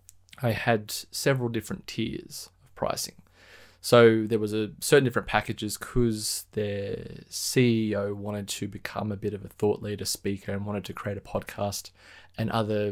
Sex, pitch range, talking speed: male, 100-115 Hz, 165 wpm